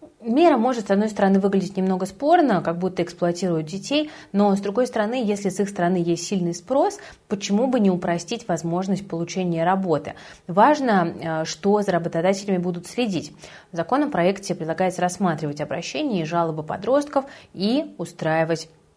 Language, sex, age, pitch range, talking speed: Russian, female, 20-39, 165-220 Hz, 145 wpm